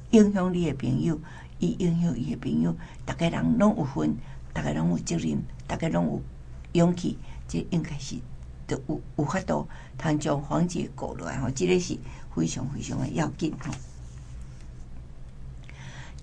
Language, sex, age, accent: Chinese, female, 60-79, American